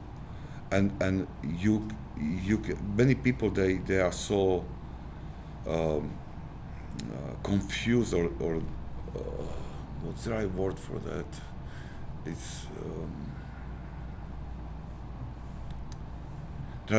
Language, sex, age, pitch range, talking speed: English, male, 50-69, 75-100 Hz, 90 wpm